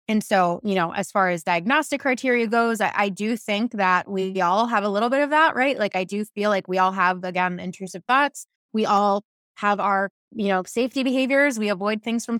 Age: 20-39